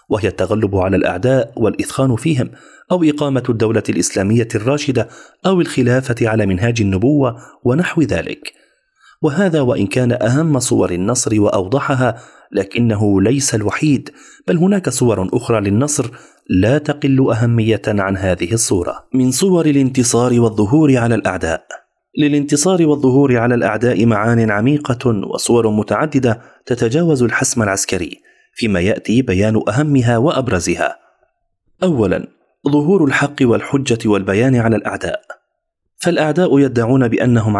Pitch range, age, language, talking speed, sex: 110-140 Hz, 30-49, Arabic, 115 wpm, male